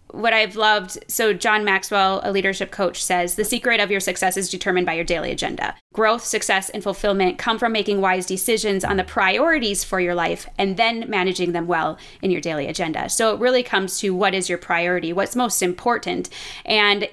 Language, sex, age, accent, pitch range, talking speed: English, female, 20-39, American, 185-220 Hz, 205 wpm